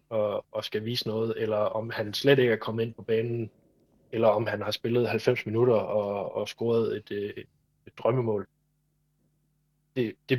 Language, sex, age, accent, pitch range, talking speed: Danish, male, 20-39, native, 110-130 Hz, 180 wpm